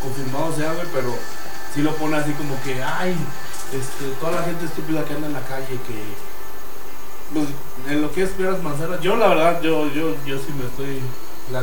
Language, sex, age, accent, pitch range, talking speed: Spanish, male, 30-49, Mexican, 120-155 Hz, 200 wpm